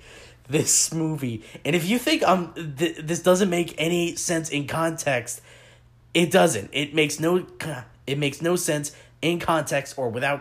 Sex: male